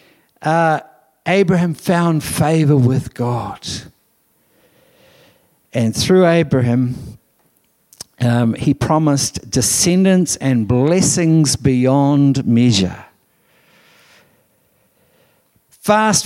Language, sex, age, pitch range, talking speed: English, male, 60-79, 120-165 Hz, 65 wpm